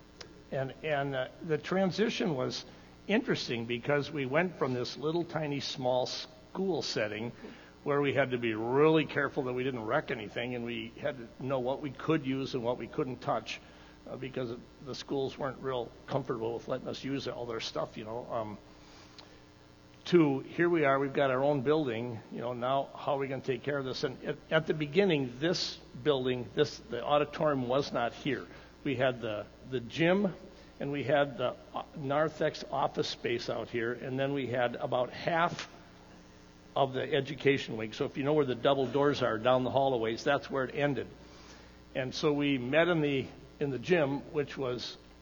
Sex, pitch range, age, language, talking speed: male, 115-145 Hz, 60-79, English, 190 wpm